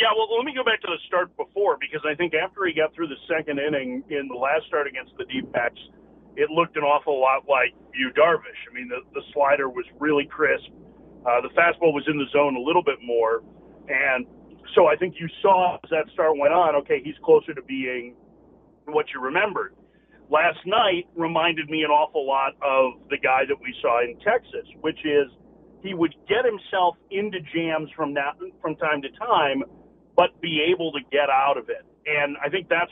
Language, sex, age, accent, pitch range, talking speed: English, male, 40-59, American, 145-195 Hz, 210 wpm